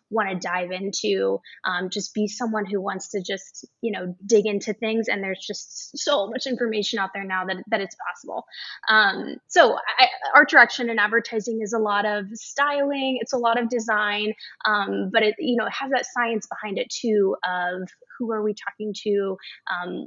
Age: 20-39